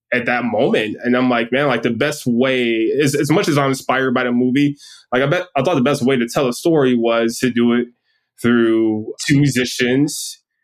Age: 20-39